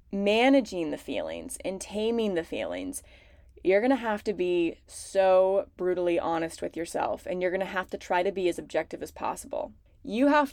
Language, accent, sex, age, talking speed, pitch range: English, American, female, 20-39, 175 wpm, 185-250 Hz